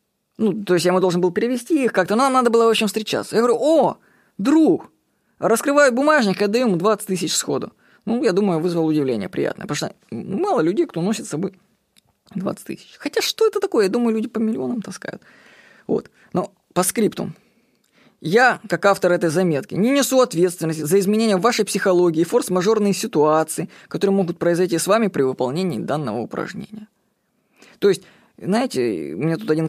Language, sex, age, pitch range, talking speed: Russian, female, 20-39, 165-215 Hz, 175 wpm